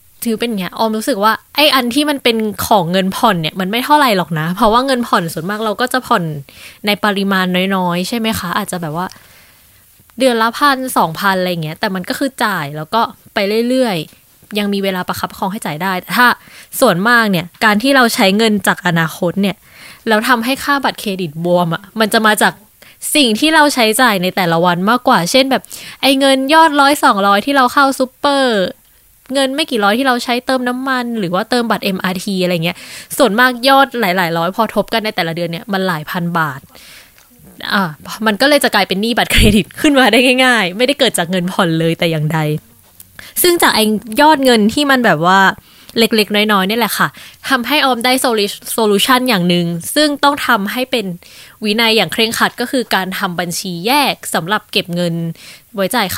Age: 10-29